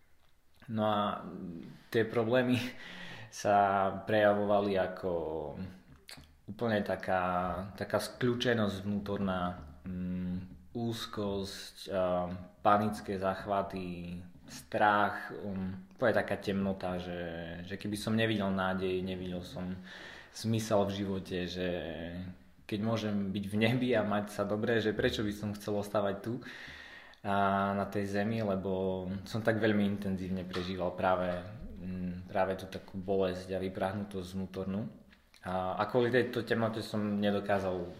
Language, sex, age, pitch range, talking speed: Slovak, male, 20-39, 90-105 Hz, 120 wpm